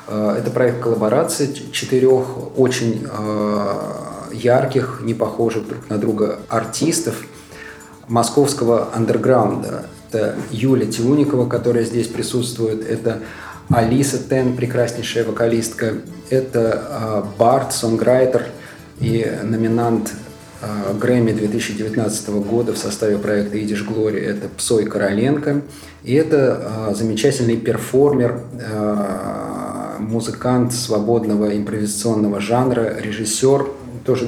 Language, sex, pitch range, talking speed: Russian, male, 105-125 Hz, 100 wpm